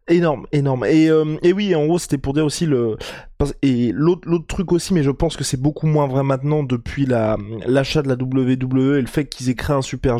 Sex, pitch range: male, 130-160 Hz